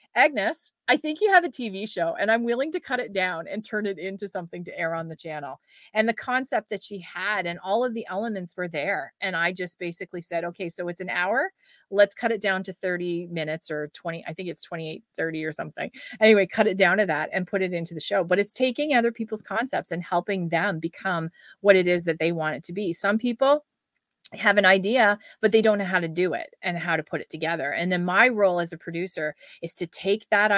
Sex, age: female, 30-49